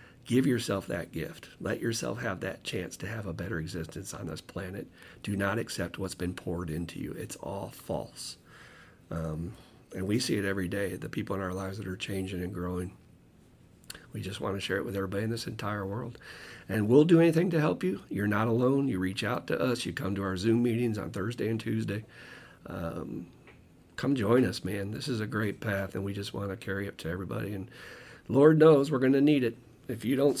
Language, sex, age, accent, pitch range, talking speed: English, male, 50-69, American, 100-120 Hz, 220 wpm